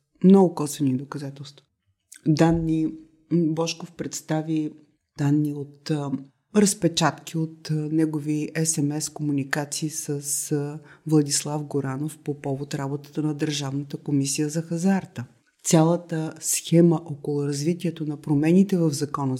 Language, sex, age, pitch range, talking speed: Bulgarian, female, 30-49, 140-165 Hz, 95 wpm